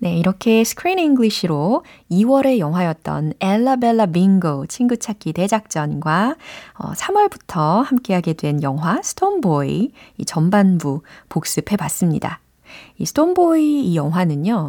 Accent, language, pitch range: native, Korean, 160-250 Hz